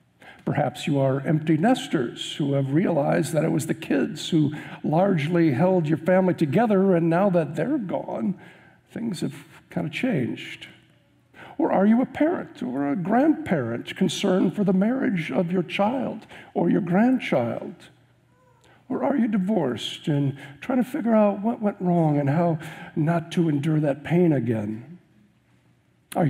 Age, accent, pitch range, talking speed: 60-79, American, 140-185 Hz, 155 wpm